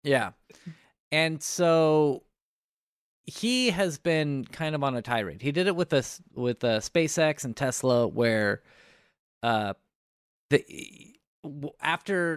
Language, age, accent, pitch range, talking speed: English, 30-49, American, 130-180 Hz, 120 wpm